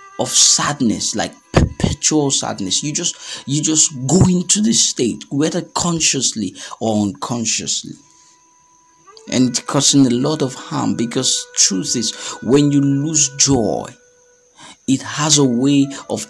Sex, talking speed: male, 135 wpm